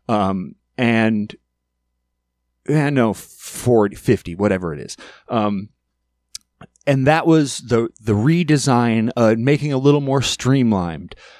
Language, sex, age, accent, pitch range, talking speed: English, male, 30-49, American, 110-140 Hz, 115 wpm